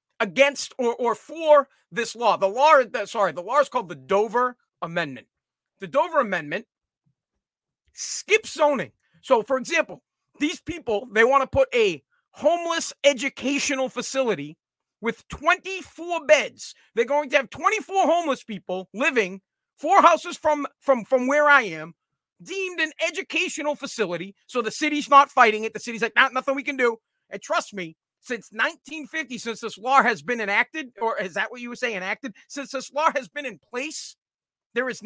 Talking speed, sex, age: 170 wpm, male, 40-59